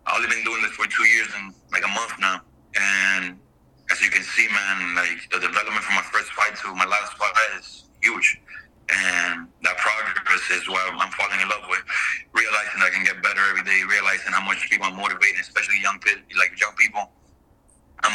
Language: English